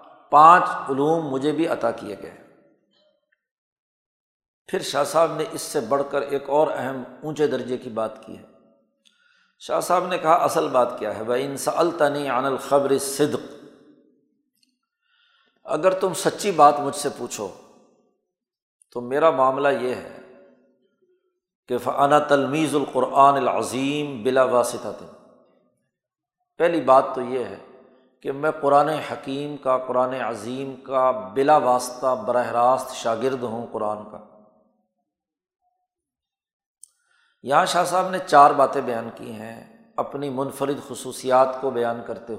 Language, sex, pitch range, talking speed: Urdu, male, 125-160 Hz, 130 wpm